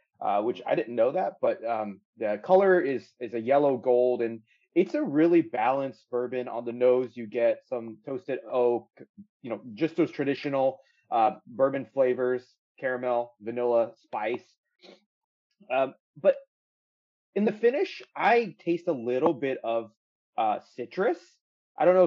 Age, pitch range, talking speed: 30-49, 125-180 Hz, 150 wpm